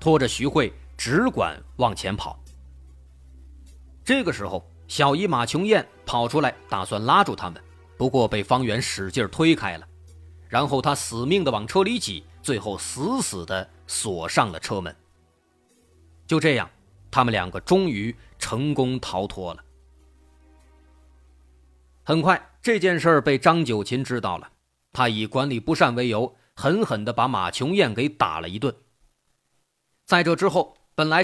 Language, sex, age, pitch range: Chinese, male, 30-49, 90-150 Hz